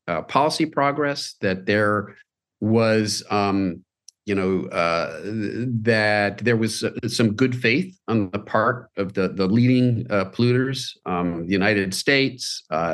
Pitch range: 100-125 Hz